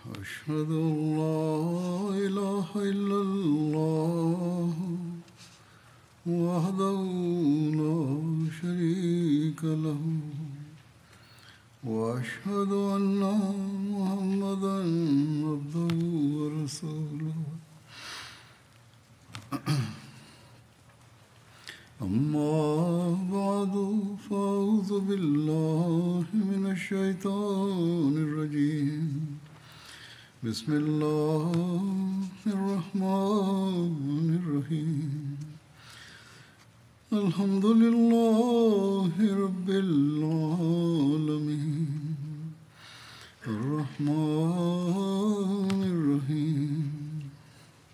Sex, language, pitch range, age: male, Tamil, 140-185 Hz, 60-79